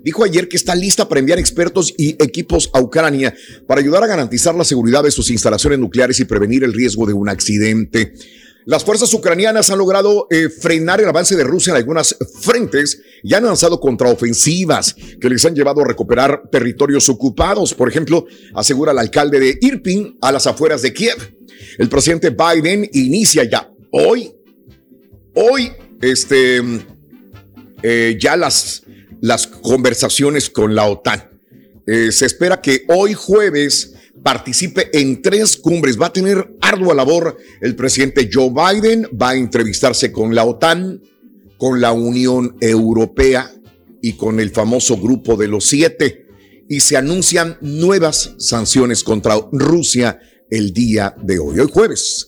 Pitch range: 120-175 Hz